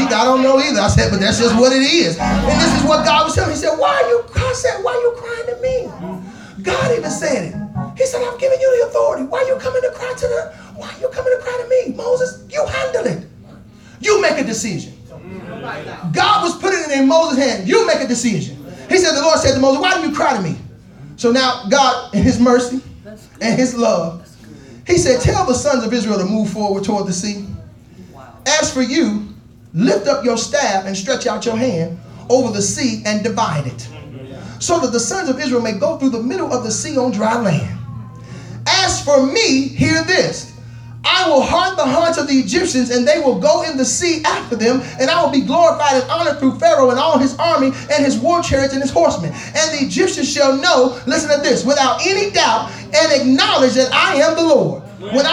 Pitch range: 235-330 Hz